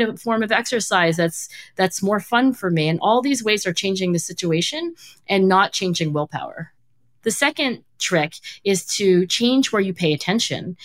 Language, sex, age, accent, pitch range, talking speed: English, female, 40-59, American, 170-225 Hz, 175 wpm